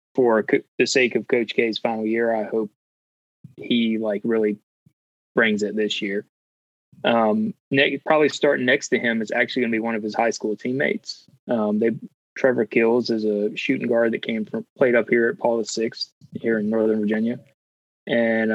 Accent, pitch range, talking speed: American, 105-125 Hz, 180 wpm